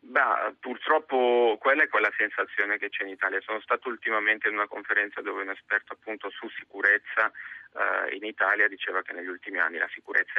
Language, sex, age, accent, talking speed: Italian, male, 30-49, native, 185 wpm